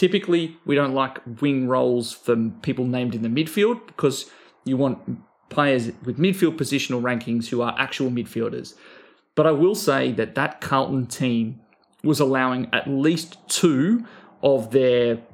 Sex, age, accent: male, 30-49, Australian